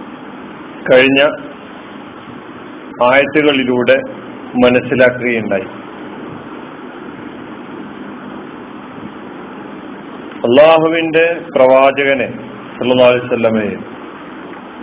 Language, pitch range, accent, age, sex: Malayalam, 135-170 Hz, native, 40-59, male